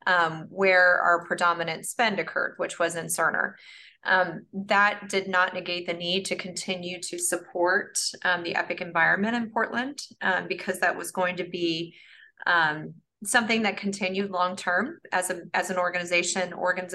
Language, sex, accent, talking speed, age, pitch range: English, female, American, 160 wpm, 30-49, 175-200 Hz